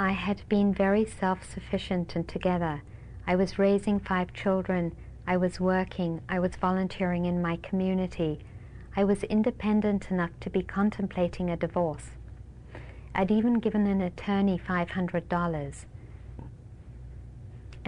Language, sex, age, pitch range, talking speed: English, female, 50-69, 165-195 Hz, 120 wpm